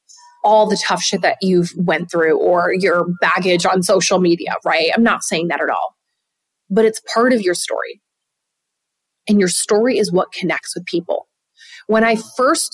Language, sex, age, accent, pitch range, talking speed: English, female, 30-49, American, 185-235 Hz, 180 wpm